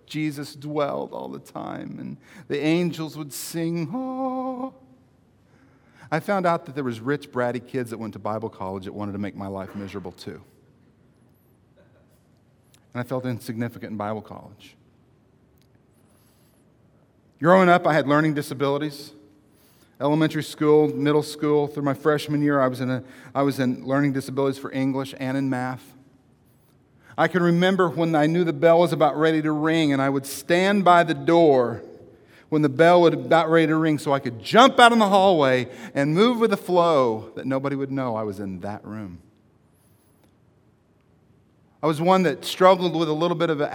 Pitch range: 125-170 Hz